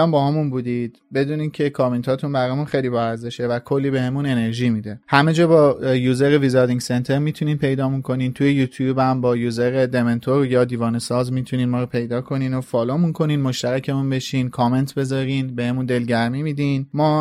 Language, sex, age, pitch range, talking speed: Persian, male, 30-49, 130-155 Hz, 165 wpm